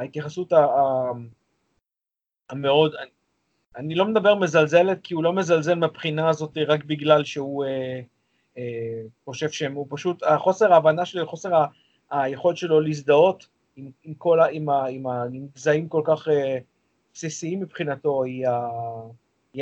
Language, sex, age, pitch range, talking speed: Hebrew, male, 30-49, 135-165 Hz, 115 wpm